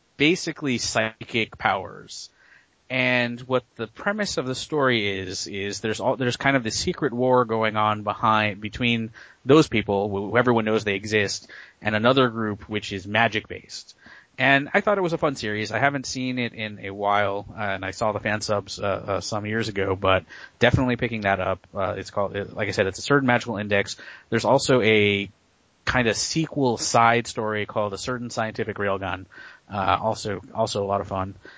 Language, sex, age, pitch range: English, male, 30-49, 100-120 Hz